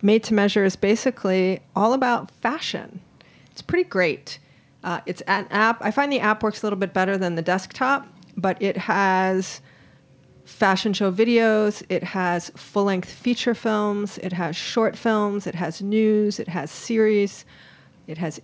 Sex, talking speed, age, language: female, 165 wpm, 40-59, English